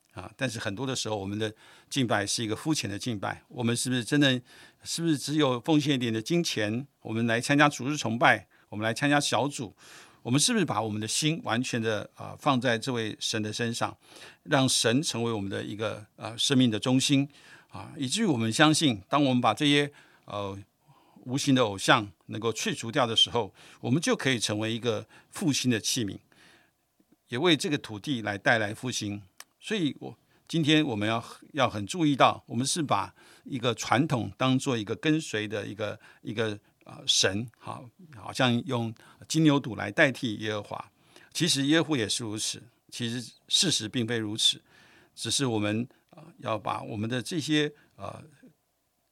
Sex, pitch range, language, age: male, 110-145 Hz, Chinese, 50-69